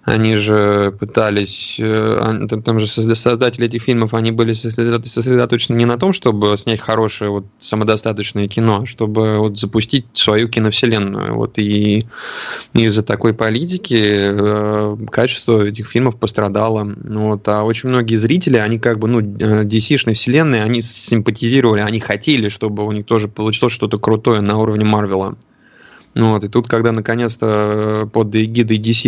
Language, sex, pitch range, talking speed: Russian, male, 105-115 Hz, 135 wpm